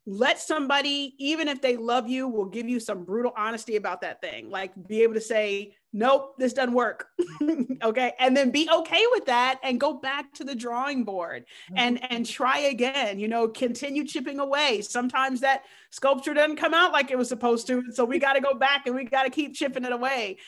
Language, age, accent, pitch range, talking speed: English, 30-49, American, 225-275 Hz, 215 wpm